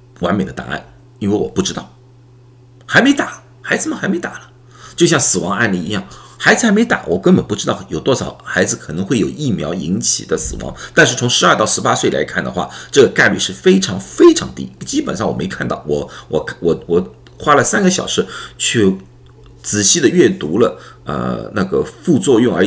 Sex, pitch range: male, 115-160 Hz